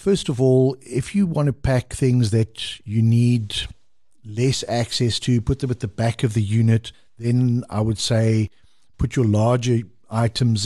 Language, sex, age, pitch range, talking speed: English, male, 50-69, 110-130 Hz, 175 wpm